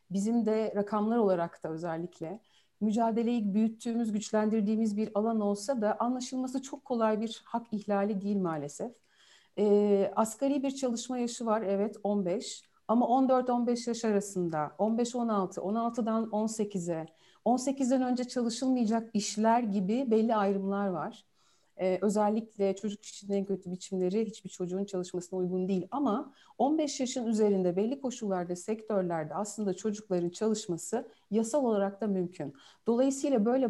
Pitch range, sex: 195-240 Hz, female